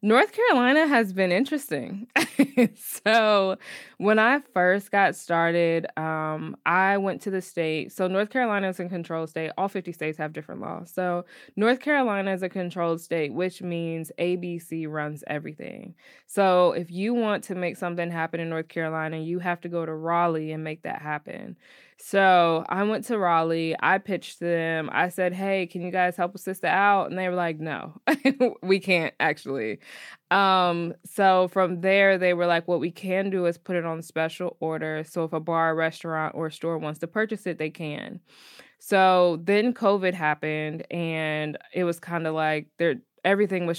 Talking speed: 180 wpm